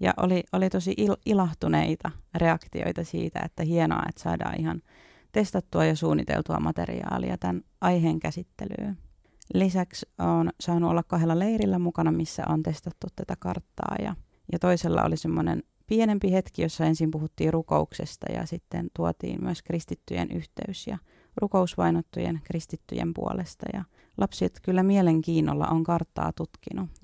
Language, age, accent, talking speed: Finnish, 30-49, native, 130 wpm